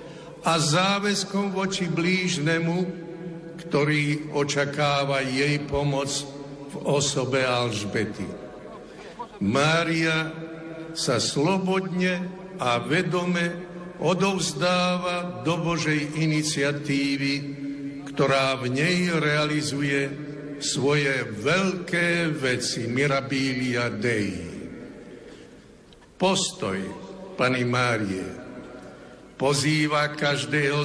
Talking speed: 65 wpm